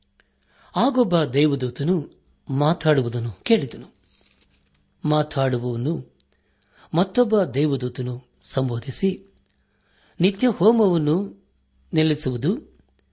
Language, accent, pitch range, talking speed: Kannada, native, 125-170 Hz, 50 wpm